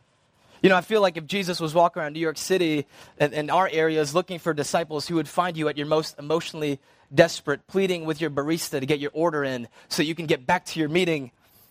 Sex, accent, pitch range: male, American, 135-175 Hz